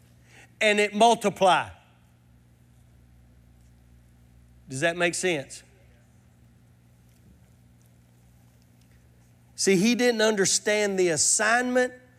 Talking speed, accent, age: 65 wpm, American, 40-59